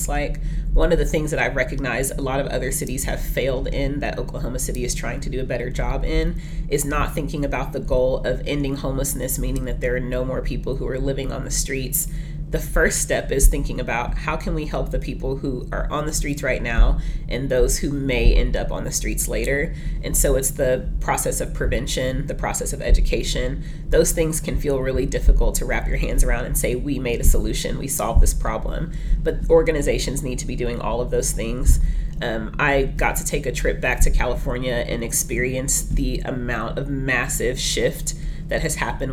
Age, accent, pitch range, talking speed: 30-49, American, 130-155 Hz, 215 wpm